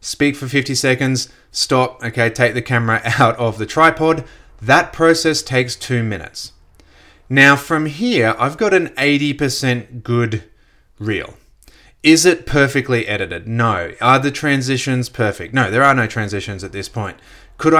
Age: 30-49